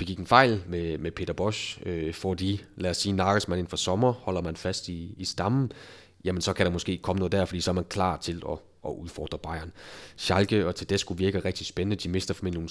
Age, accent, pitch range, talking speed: 30-49, native, 85-100 Hz, 245 wpm